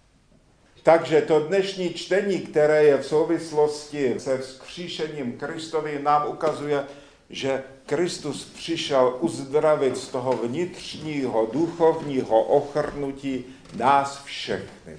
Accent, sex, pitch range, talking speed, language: native, male, 125-150 Hz, 95 wpm, Czech